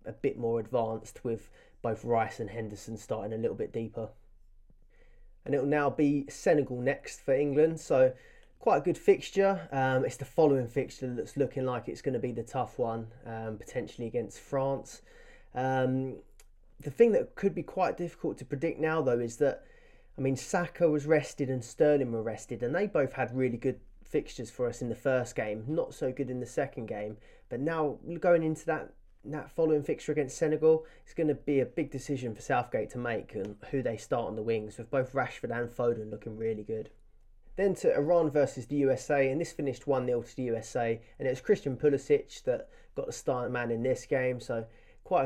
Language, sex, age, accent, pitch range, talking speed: English, male, 20-39, British, 120-155 Hz, 205 wpm